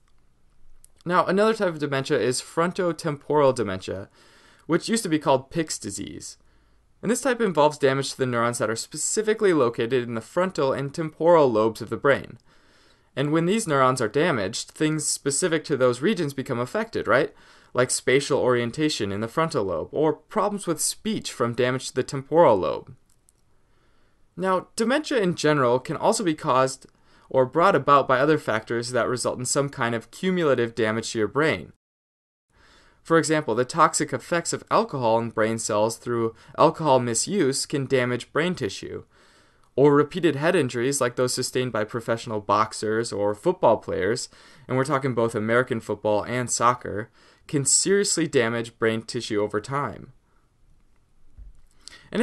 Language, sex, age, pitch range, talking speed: English, male, 20-39, 115-160 Hz, 160 wpm